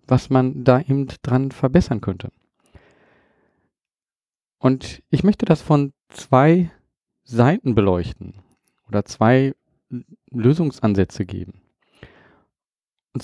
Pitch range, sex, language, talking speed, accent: 115-155 Hz, male, German, 90 wpm, German